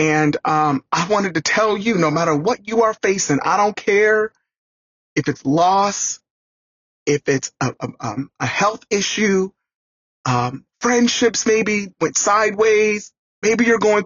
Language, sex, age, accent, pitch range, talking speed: English, male, 30-49, American, 130-185 Hz, 140 wpm